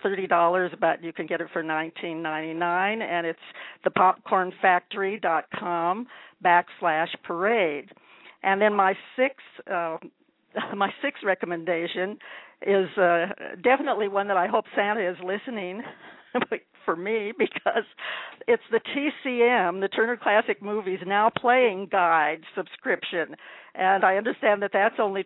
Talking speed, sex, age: 135 wpm, female, 60-79